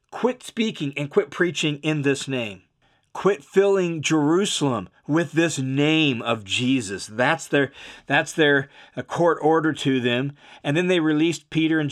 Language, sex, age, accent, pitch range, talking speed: English, male, 40-59, American, 145-190 Hz, 155 wpm